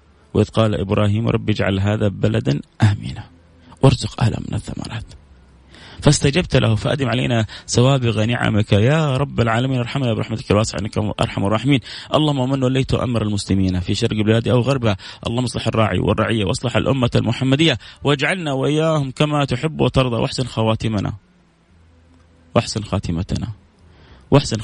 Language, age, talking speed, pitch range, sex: English, 30-49, 130 wpm, 95-115 Hz, male